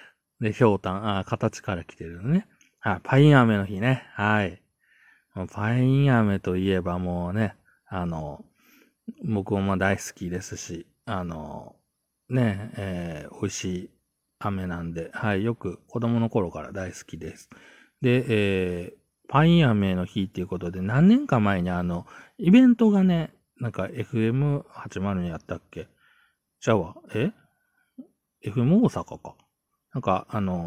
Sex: male